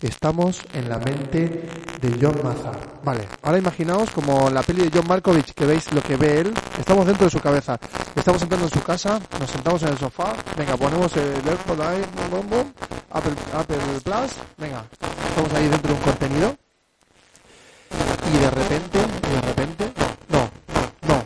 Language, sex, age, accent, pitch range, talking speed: Spanish, male, 30-49, Spanish, 135-185 Hz, 165 wpm